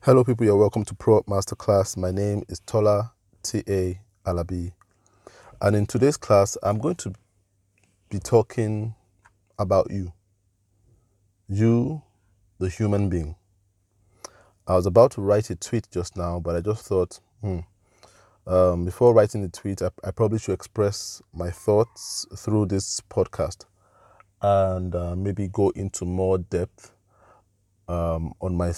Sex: male